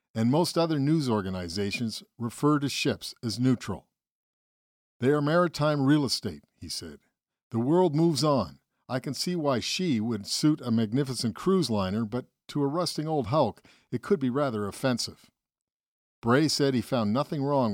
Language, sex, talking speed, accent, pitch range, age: English, male, 165 wpm, American, 105-140 Hz, 50-69